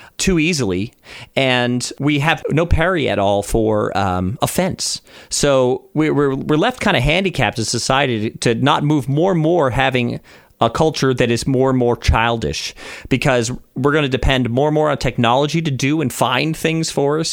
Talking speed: 185 wpm